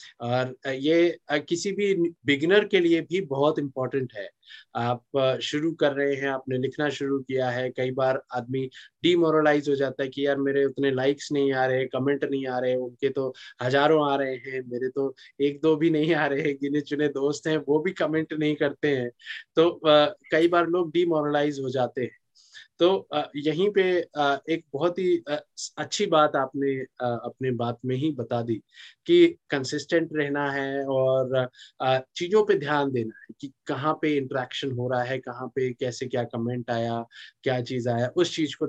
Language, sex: Hindi, male